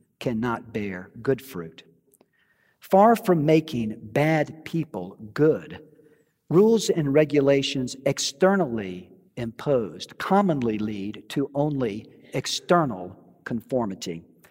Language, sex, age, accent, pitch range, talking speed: English, male, 50-69, American, 125-175 Hz, 85 wpm